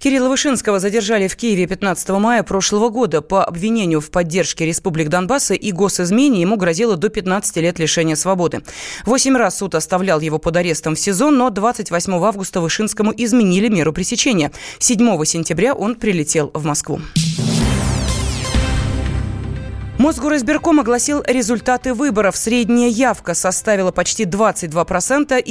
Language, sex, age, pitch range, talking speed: Russian, female, 20-39, 170-230 Hz, 130 wpm